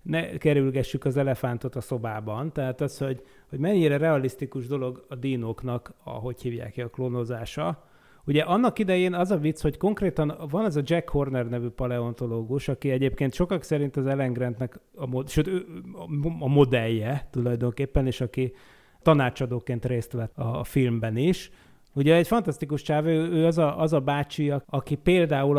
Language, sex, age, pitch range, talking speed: Hungarian, male, 30-49, 125-145 Hz, 165 wpm